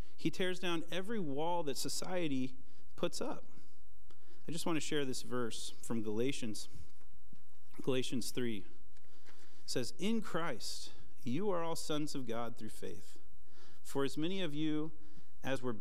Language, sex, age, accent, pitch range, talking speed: English, male, 40-59, American, 100-140 Hz, 145 wpm